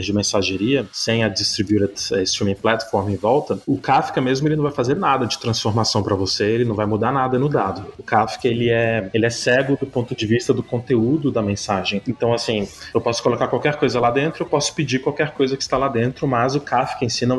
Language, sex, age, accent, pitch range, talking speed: Portuguese, male, 20-39, Brazilian, 105-130 Hz, 230 wpm